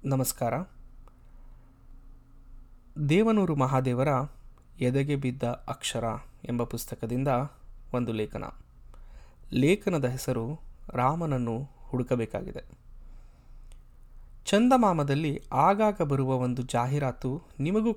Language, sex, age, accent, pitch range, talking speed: Kannada, male, 20-39, native, 125-160 Hz, 65 wpm